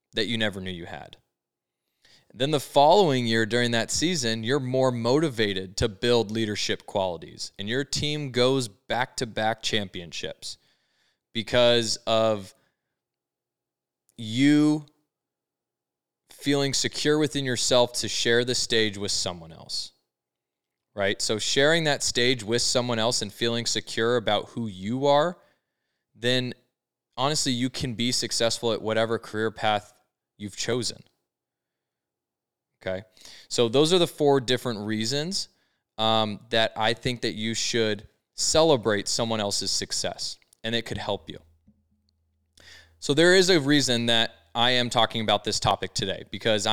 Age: 20-39